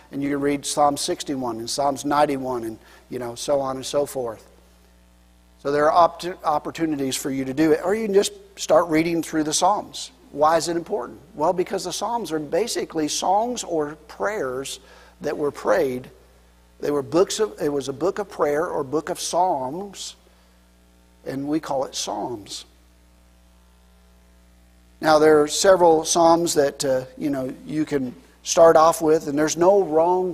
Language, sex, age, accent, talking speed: English, male, 50-69, American, 175 wpm